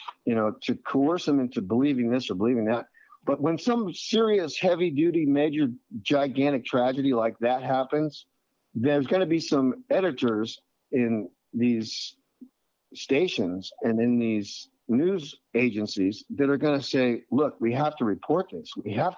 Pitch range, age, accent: 115-150 Hz, 50-69, American